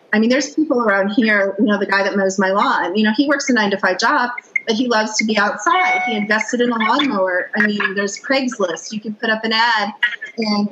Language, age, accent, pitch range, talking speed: English, 40-59, American, 200-250 Hz, 250 wpm